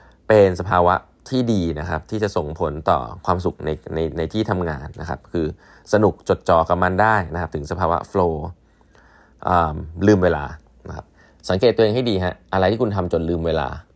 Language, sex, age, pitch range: Thai, male, 20-39, 85-110 Hz